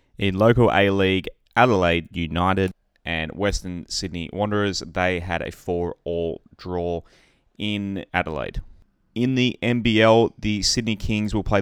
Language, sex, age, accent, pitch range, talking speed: English, male, 20-39, Australian, 85-100 Hz, 135 wpm